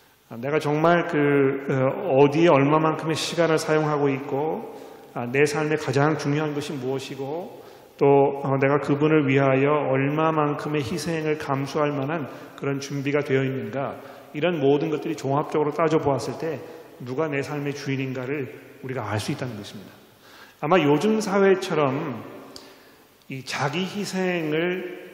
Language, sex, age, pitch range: Korean, male, 40-59, 135-170 Hz